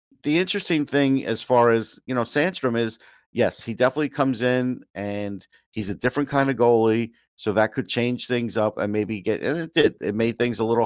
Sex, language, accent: male, English, American